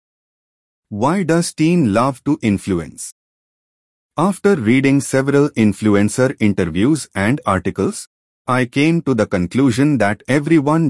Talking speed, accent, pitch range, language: 110 wpm, Indian, 105-150 Hz, English